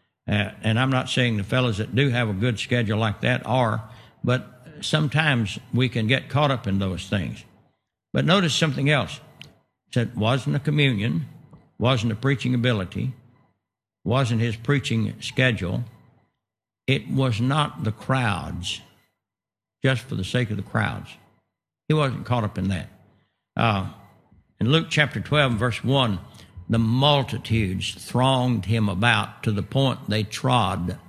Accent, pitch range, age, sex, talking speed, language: American, 105-130 Hz, 60-79, male, 150 wpm, English